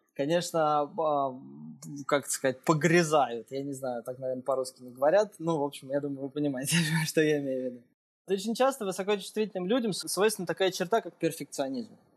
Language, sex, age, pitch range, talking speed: Russian, male, 20-39, 150-195 Hz, 160 wpm